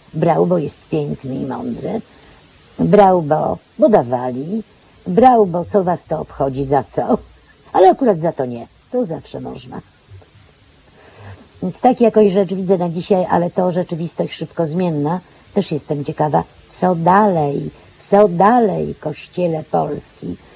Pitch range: 145-205 Hz